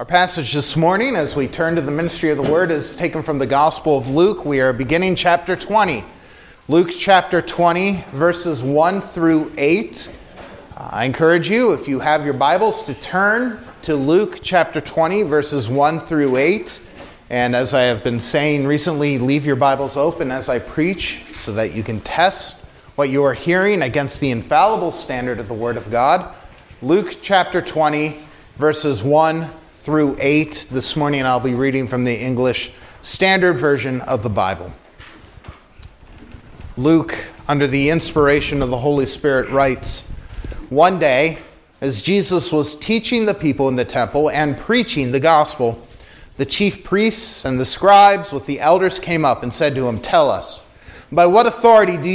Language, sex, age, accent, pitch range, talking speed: English, male, 30-49, American, 130-175 Hz, 170 wpm